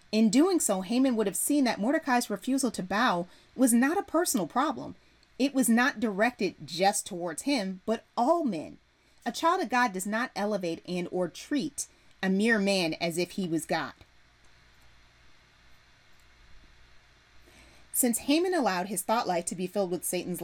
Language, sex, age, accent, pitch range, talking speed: English, female, 30-49, American, 175-250 Hz, 165 wpm